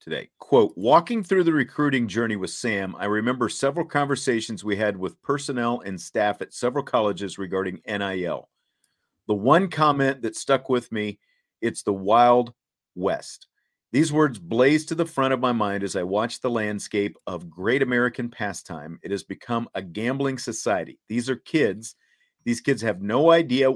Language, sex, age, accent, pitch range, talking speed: English, male, 40-59, American, 100-135 Hz, 170 wpm